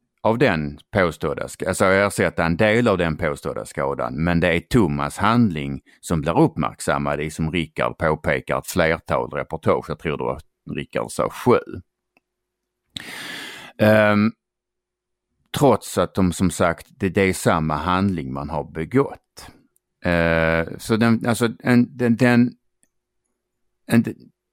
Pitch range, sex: 80-115 Hz, male